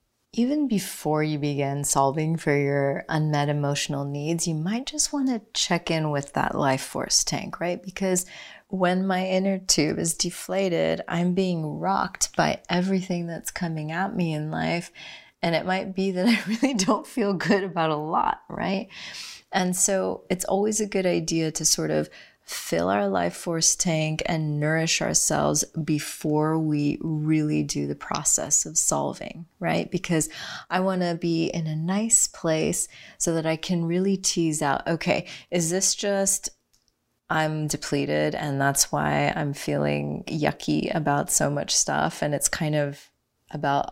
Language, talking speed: English, 160 wpm